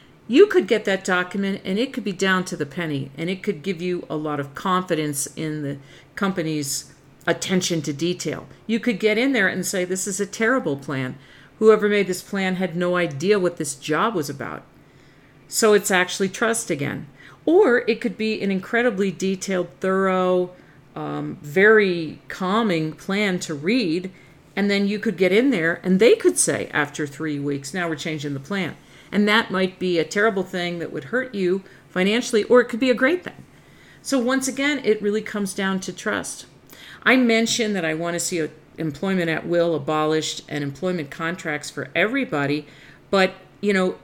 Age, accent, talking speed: 50-69, American, 185 wpm